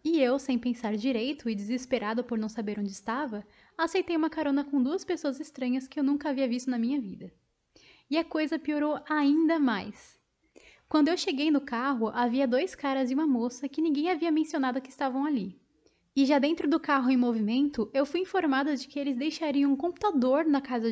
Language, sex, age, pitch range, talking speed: Portuguese, female, 10-29, 245-300 Hz, 200 wpm